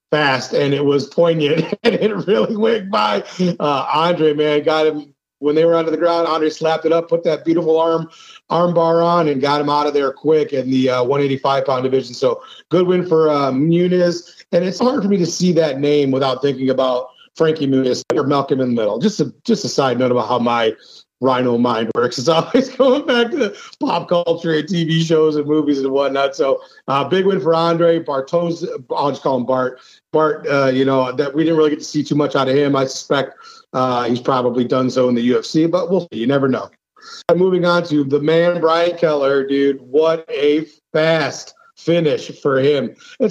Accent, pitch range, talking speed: American, 140-170 Hz, 220 wpm